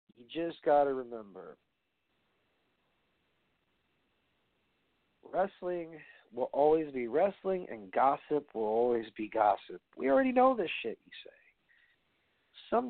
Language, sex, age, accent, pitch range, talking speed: English, male, 40-59, American, 135-190 Hz, 110 wpm